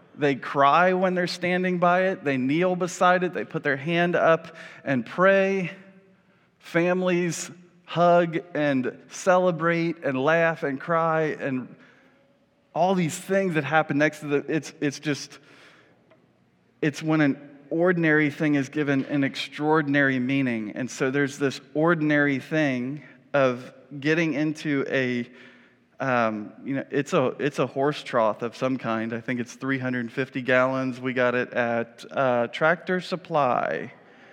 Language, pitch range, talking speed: English, 135-160 Hz, 145 wpm